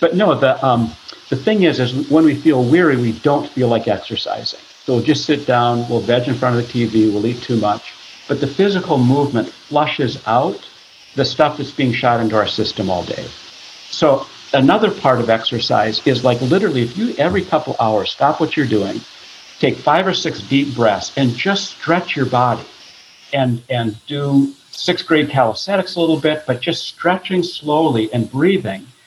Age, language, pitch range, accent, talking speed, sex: 60-79, English, 115-155 Hz, American, 190 wpm, male